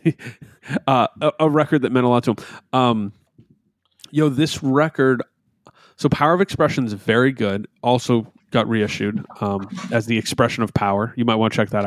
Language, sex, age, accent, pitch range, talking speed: English, male, 30-49, American, 110-145 Hz, 185 wpm